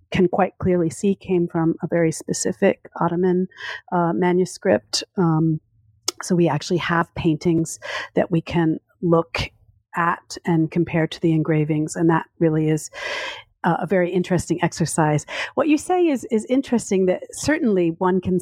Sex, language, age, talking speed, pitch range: female, English, 50-69, 150 wpm, 160-190 Hz